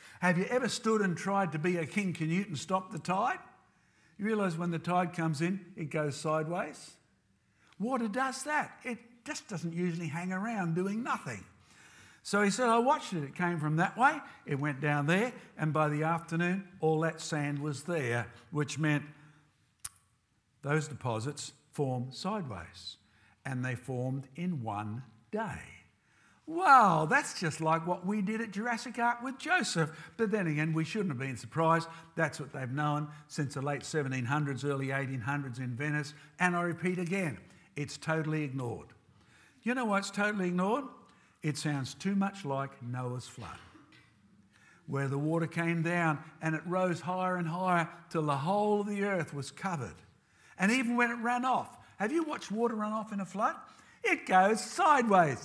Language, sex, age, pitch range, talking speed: English, male, 60-79, 145-200 Hz, 175 wpm